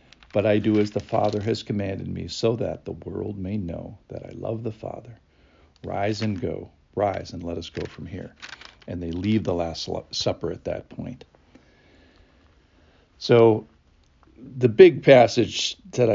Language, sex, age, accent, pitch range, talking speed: English, male, 50-69, American, 90-120 Hz, 165 wpm